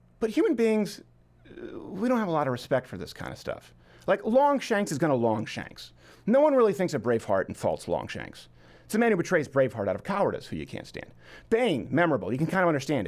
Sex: male